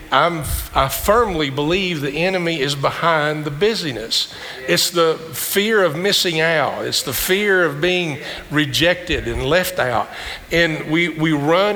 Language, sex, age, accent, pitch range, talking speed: English, male, 50-69, American, 130-165 Hz, 150 wpm